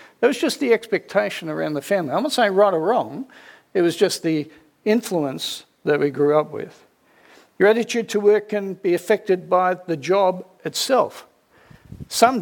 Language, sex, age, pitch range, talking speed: English, male, 60-79, 150-205 Hz, 180 wpm